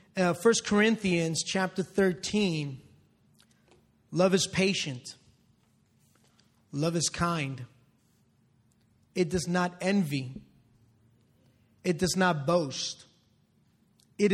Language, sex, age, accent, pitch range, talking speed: English, male, 30-49, American, 150-205 Hz, 85 wpm